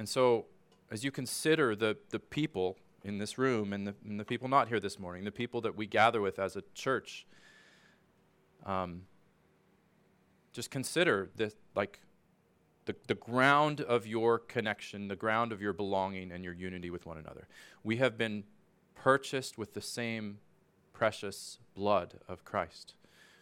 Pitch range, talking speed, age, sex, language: 95-120 Hz, 160 wpm, 30-49, male, English